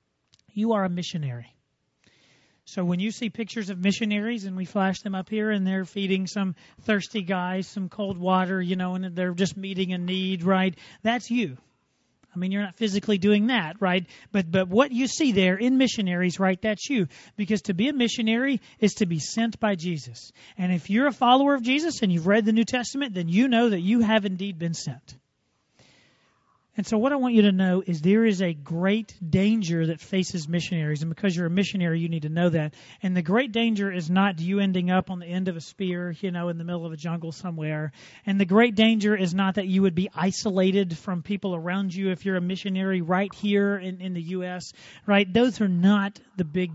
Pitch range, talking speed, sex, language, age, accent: 180-210 Hz, 220 wpm, male, English, 40-59, American